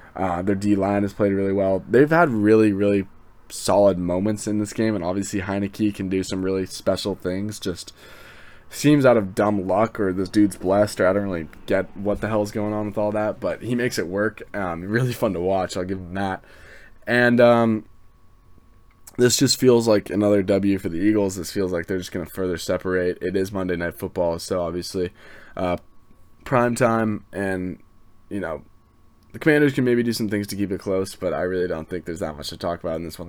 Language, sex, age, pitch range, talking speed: English, male, 20-39, 90-105 Hz, 215 wpm